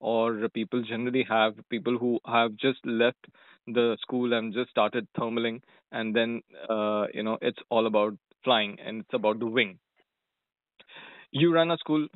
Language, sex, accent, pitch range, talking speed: English, male, Indian, 110-130 Hz, 165 wpm